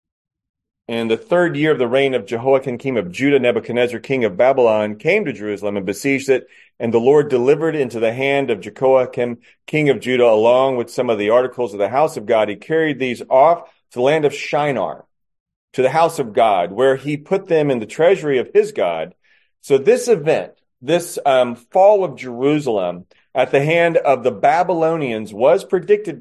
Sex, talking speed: male, 195 wpm